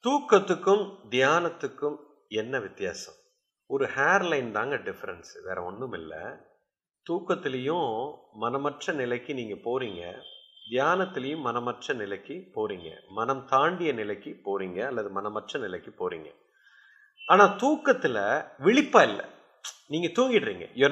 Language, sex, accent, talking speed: English, male, Indian, 100 wpm